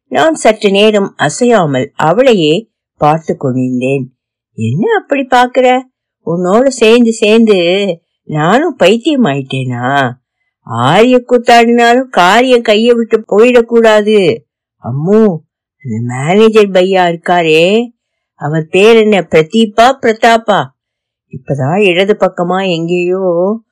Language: Tamil